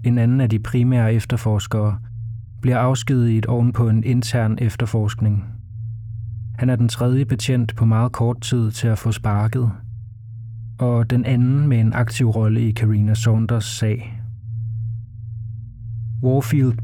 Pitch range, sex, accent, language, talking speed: 110-125 Hz, male, native, Danish, 140 wpm